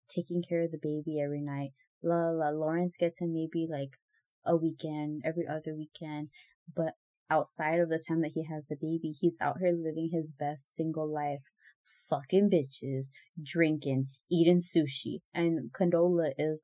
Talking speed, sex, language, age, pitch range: 160 wpm, female, English, 20-39, 155-185 Hz